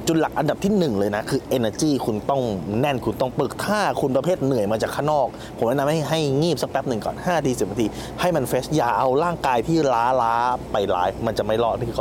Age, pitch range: 20-39, 125-170 Hz